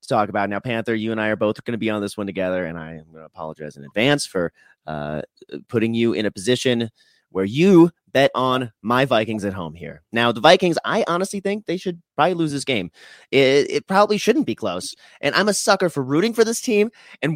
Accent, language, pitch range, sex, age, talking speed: American, English, 105-155 Hz, male, 30-49, 230 wpm